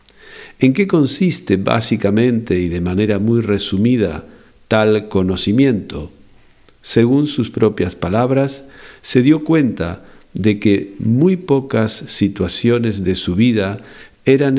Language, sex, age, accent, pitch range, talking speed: Spanish, male, 50-69, Argentinian, 100-135 Hz, 110 wpm